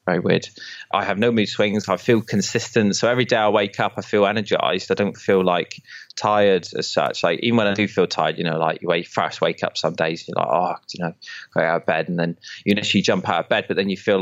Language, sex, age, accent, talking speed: English, male, 20-39, British, 275 wpm